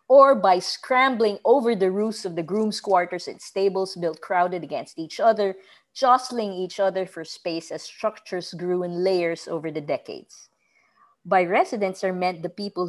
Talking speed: 170 wpm